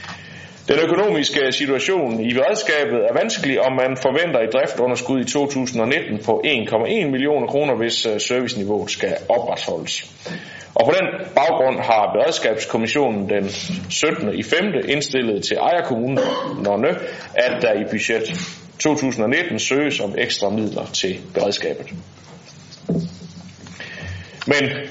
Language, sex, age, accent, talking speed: Danish, male, 30-49, native, 115 wpm